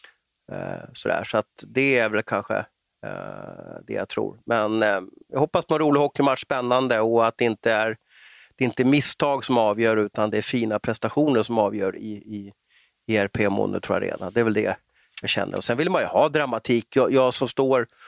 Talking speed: 185 wpm